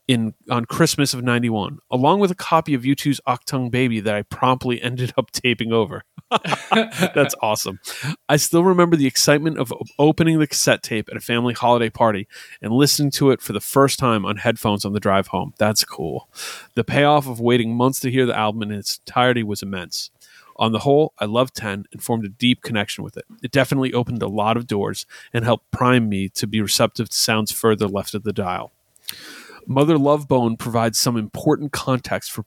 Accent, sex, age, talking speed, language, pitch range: American, male, 30-49, 200 wpm, English, 110-135 Hz